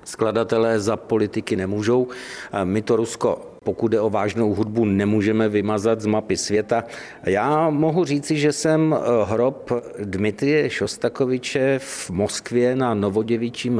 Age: 50-69